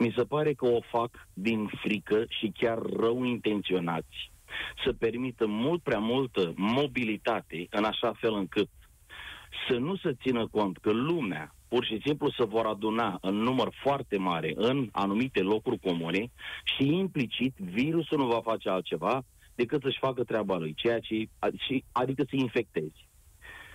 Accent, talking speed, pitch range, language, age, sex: native, 150 wpm, 110-150 Hz, Romanian, 30-49, male